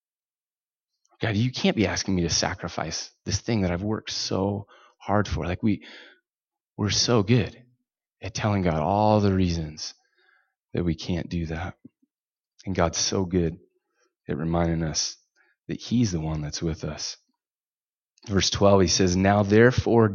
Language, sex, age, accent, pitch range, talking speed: English, male, 30-49, American, 85-110 Hz, 150 wpm